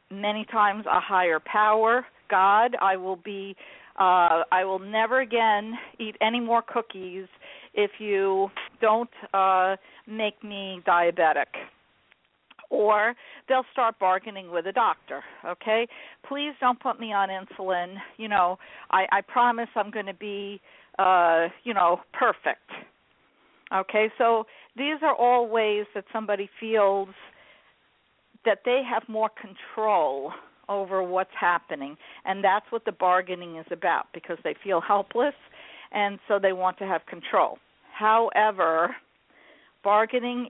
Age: 50-69